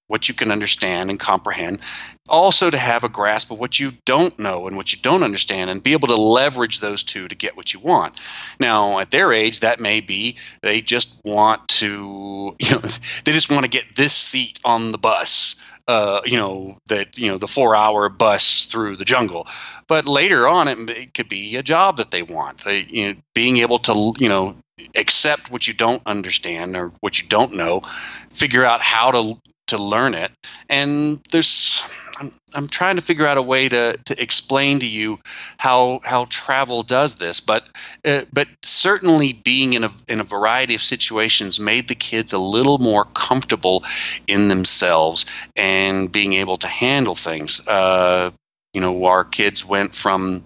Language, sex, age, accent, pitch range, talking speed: English, male, 30-49, American, 100-130 Hz, 190 wpm